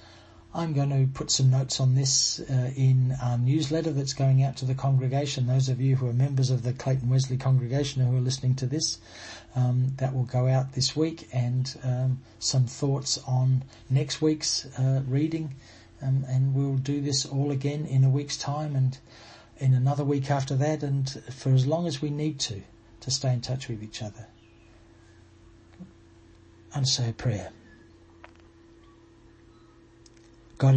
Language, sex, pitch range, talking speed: English, male, 110-135 Hz, 170 wpm